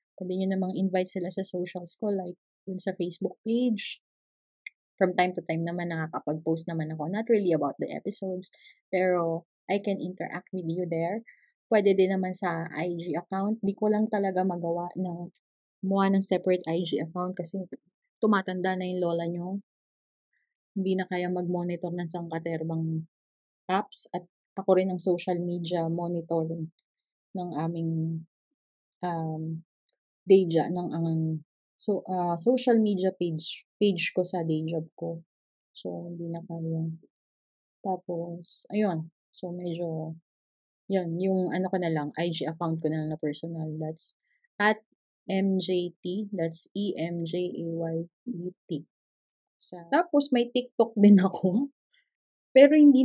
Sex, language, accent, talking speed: female, Filipino, native, 140 wpm